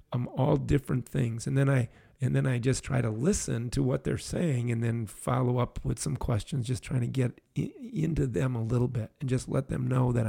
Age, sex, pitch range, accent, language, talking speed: 40-59, male, 120-135 Hz, American, English, 240 wpm